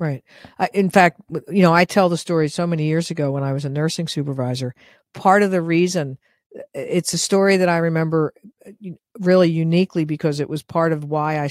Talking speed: 200 wpm